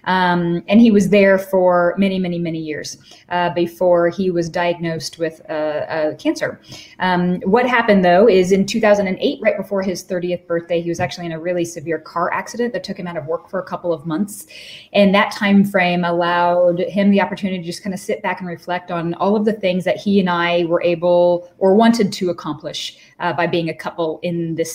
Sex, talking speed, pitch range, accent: female, 215 wpm, 170-190 Hz, American